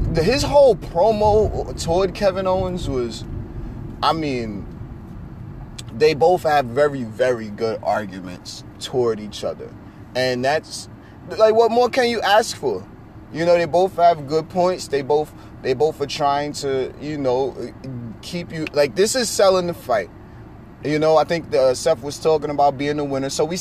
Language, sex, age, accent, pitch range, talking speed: English, male, 30-49, American, 120-160 Hz, 170 wpm